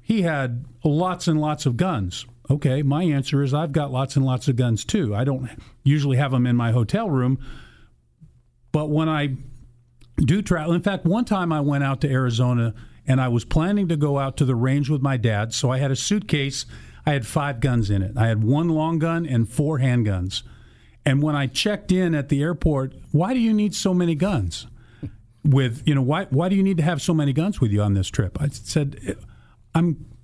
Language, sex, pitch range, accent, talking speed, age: English, male, 130-175 Hz, American, 220 wpm, 50-69